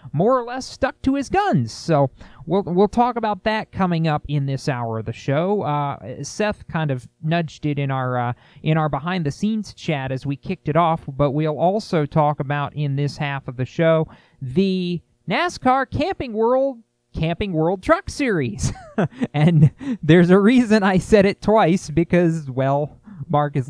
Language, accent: English, American